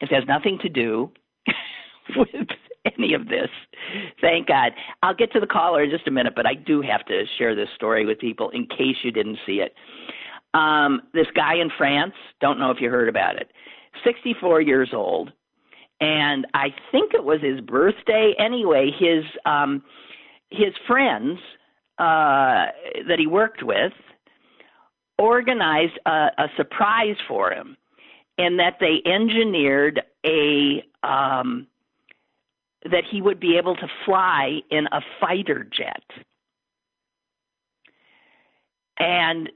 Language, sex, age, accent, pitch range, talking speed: English, male, 50-69, American, 145-210 Hz, 140 wpm